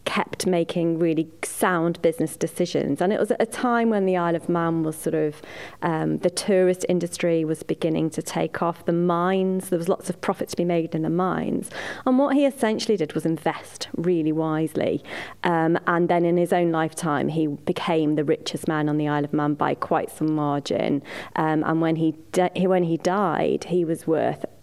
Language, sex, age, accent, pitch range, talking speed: English, female, 30-49, British, 160-190 Hz, 200 wpm